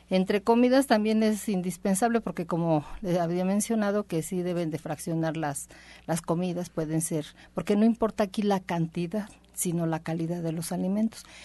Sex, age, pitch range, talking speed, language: female, 50-69, 160-200 Hz, 170 wpm, Spanish